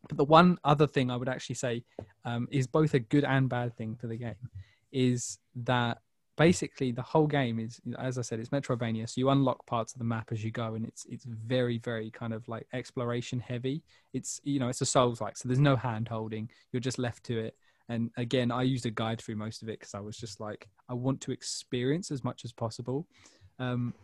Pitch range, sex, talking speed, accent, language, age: 120-145 Hz, male, 225 wpm, British, English, 20-39